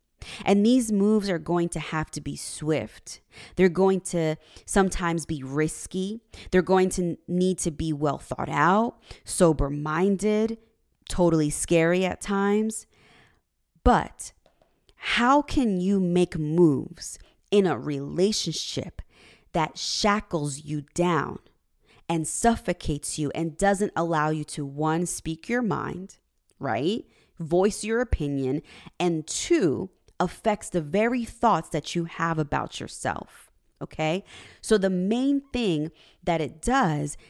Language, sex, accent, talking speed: English, female, American, 125 wpm